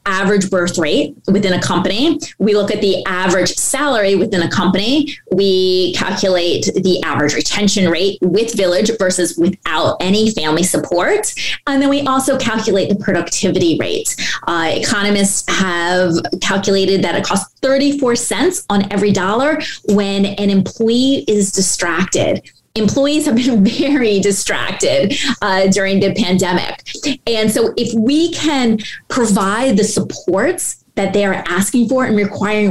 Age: 20-39